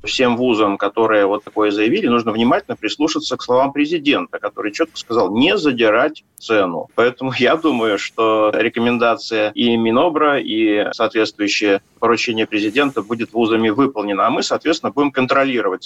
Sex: male